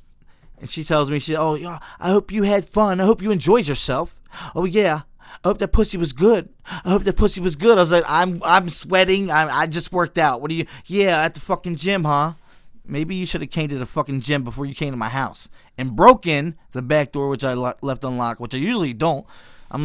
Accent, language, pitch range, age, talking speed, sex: American, English, 130-180 Hz, 20-39, 240 wpm, male